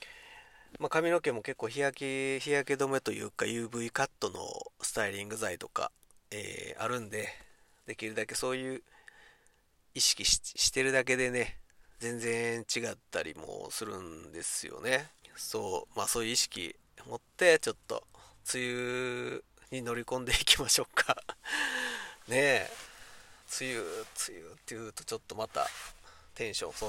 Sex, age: male, 40-59